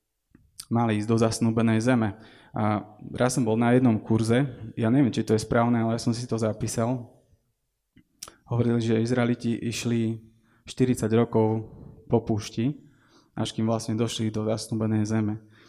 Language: Slovak